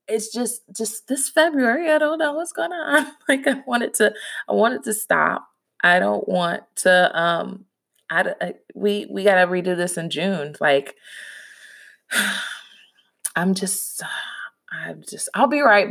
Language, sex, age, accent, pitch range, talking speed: English, female, 20-39, American, 155-230 Hz, 160 wpm